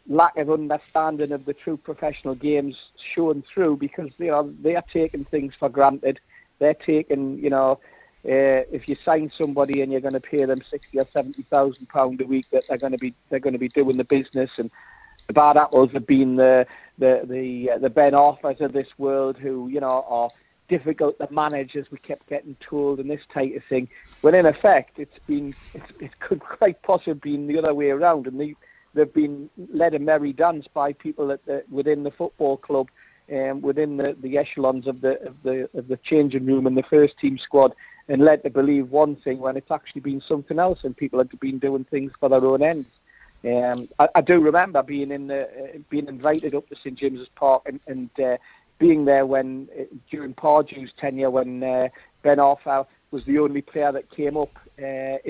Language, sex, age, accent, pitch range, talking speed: English, male, 50-69, British, 135-150 Hz, 210 wpm